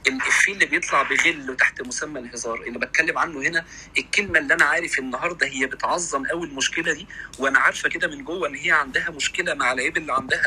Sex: male